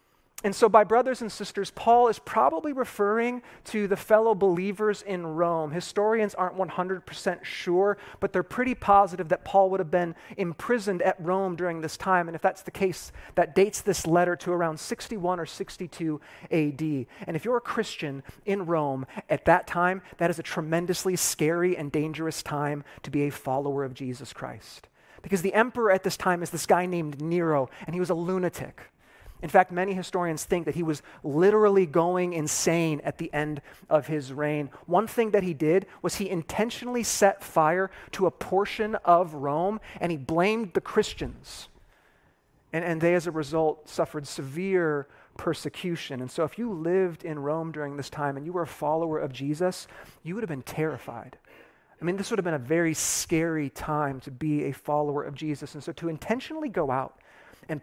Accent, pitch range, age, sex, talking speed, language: American, 155-195 Hz, 30-49, male, 190 wpm, English